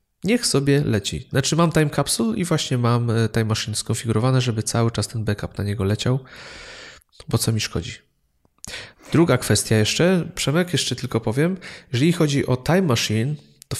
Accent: native